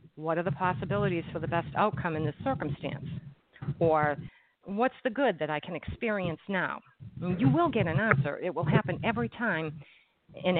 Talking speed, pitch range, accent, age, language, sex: 175 wpm, 150-190 Hz, American, 50-69, English, female